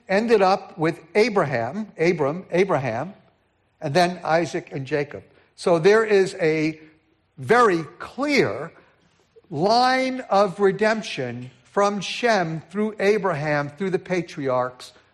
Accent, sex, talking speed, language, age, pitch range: American, male, 105 wpm, English, 60-79, 155-200 Hz